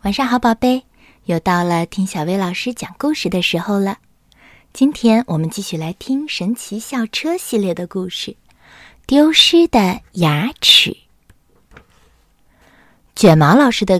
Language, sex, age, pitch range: Chinese, female, 20-39, 185-270 Hz